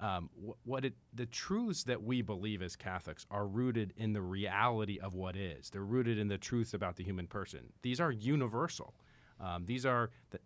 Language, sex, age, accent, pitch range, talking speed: English, male, 40-59, American, 95-120 Hz, 195 wpm